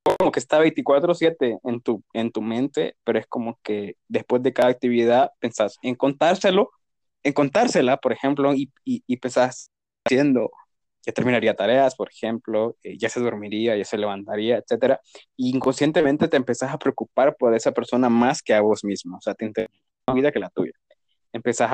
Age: 20-39